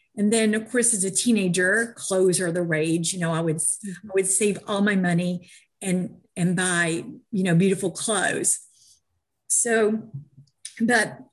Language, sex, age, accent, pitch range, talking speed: English, female, 50-69, American, 170-210 Hz, 160 wpm